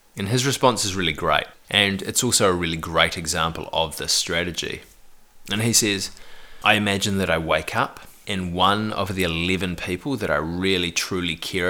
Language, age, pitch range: English, 20-39, 85-100 Hz